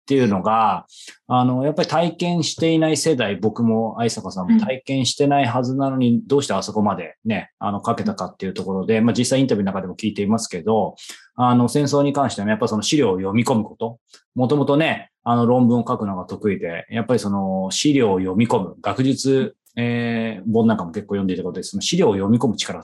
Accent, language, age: native, Japanese, 20-39